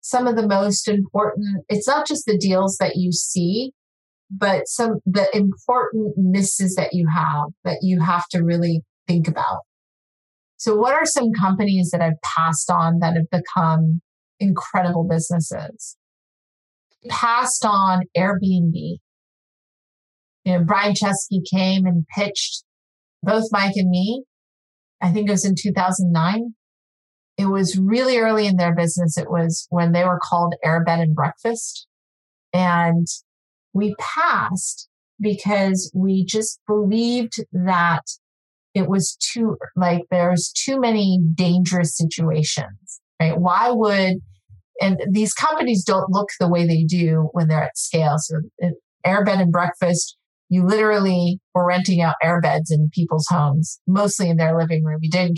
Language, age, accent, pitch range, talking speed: English, 30-49, American, 170-200 Hz, 140 wpm